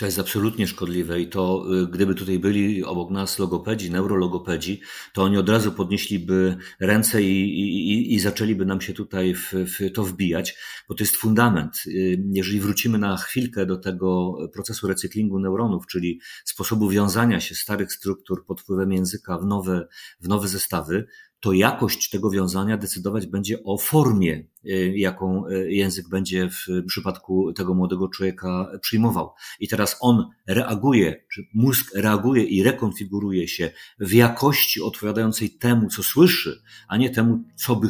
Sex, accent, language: male, native, Polish